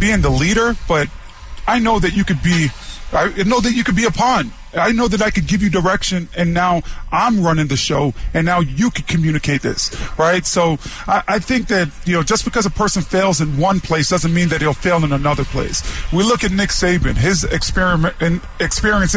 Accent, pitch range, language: American, 160-205 Hz, English